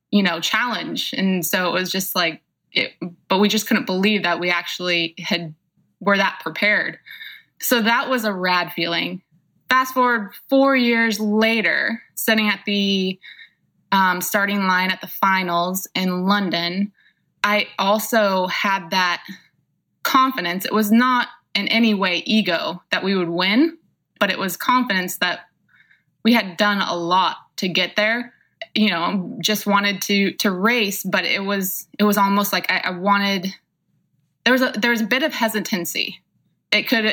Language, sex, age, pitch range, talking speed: English, female, 20-39, 185-220 Hz, 165 wpm